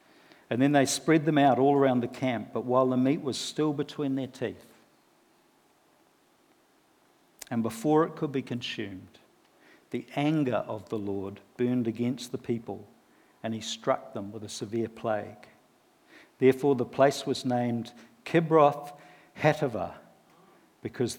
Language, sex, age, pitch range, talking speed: English, male, 50-69, 120-165 Hz, 140 wpm